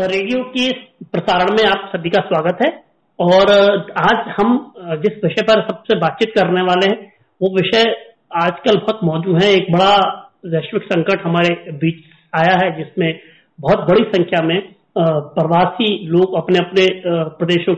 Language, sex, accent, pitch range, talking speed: Hindi, male, native, 165-205 Hz, 150 wpm